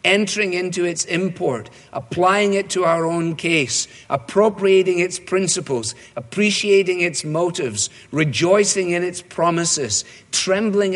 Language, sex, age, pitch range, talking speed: English, male, 50-69, 140-185 Hz, 115 wpm